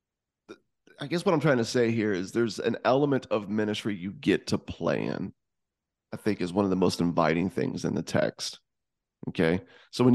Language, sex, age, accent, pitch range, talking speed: English, male, 30-49, American, 100-125 Hz, 195 wpm